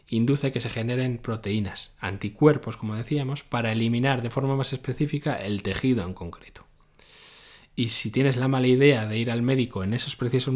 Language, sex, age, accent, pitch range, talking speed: Spanish, male, 20-39, Spanish, 105-130 Hz, 175 wpm